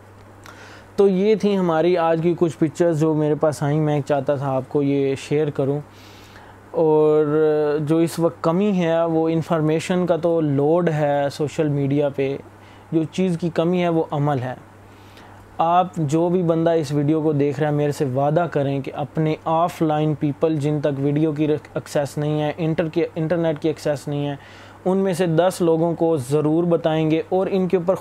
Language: Urdu